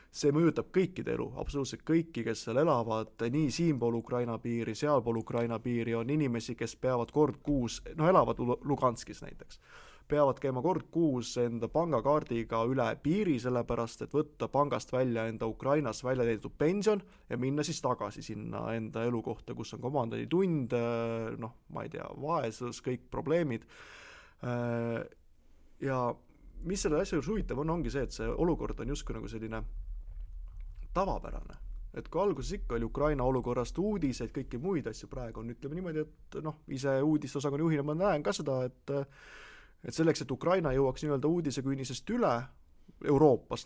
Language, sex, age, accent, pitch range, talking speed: English, male, 20-39, Finnish, 115-155 Hz, 160 wpm